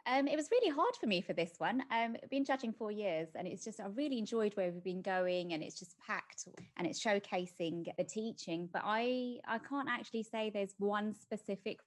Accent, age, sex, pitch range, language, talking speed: British, 20-39, female, 170-210 Hz, English, 220 wpm